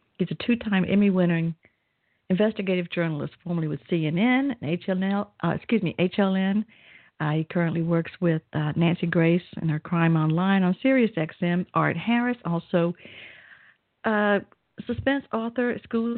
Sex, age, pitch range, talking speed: female, 60-79, 170-215 Hz, 120 wpm